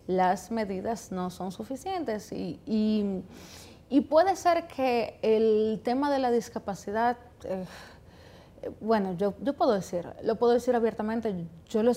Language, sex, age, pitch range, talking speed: Spanish, female, 30-49, 210-260 Hz, 145 wpm